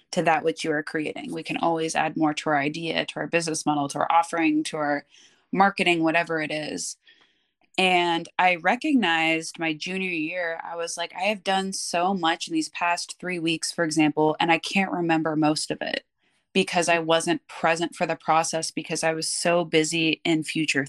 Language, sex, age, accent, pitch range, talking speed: English, female, 20-39, American, 160-185 Hz, 200 wpm